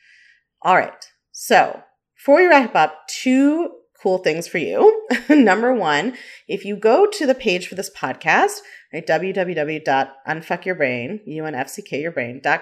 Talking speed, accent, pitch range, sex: 115 wpm, American, 150-245 Hz, female